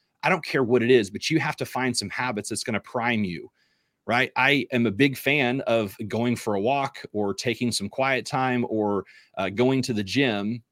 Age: 30-49